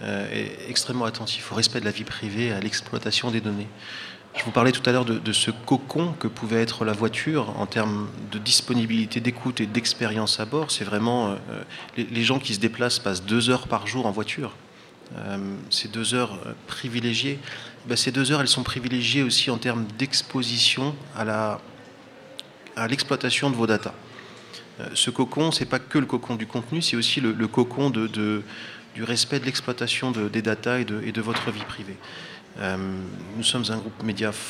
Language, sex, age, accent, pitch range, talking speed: French, male, 30-49, French, 110-125 Hz, 185 wpm